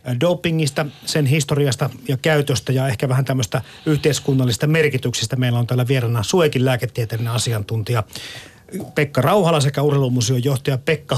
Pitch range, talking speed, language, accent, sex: 125-155 Hz, 130 wpm, Finnish, native, male